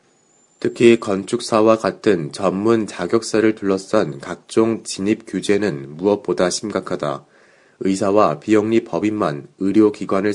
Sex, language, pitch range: male, Korean, 95-110 Hz